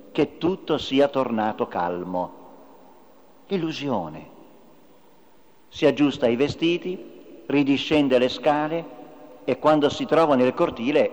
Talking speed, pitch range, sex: 100 wpm, 125-180 Hz, male